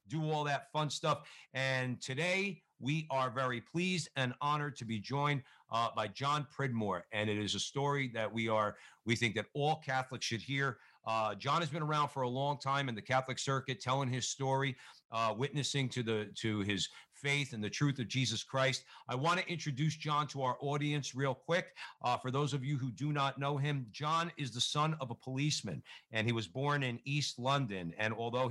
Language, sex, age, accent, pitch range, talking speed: English, male, 50-69, American, 115-145 Hz, 210 wpm